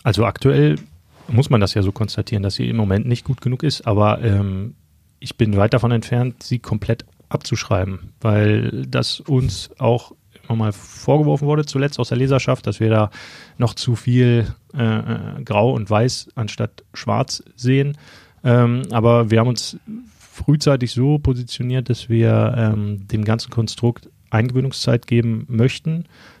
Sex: male